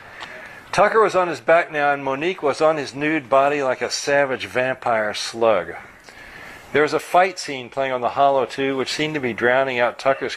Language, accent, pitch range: English, American, 125-150 Hz